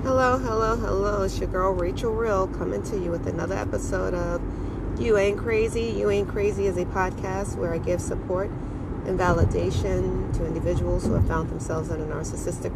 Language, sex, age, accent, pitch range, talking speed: English, female, 40-59, American, 95-150 Hz, 185 wpm